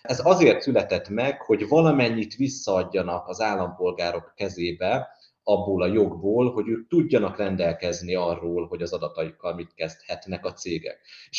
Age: 30-49